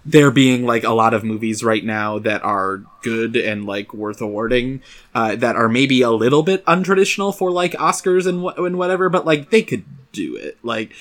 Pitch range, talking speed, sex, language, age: 115-150 Hz, 205 wpm, male, English, 20-39